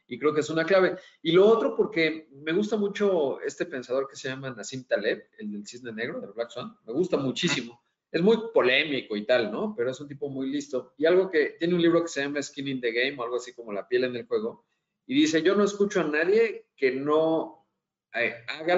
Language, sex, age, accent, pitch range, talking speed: Spanish, male, 40-59, Mexican, 125-175 Hz, 235 wpm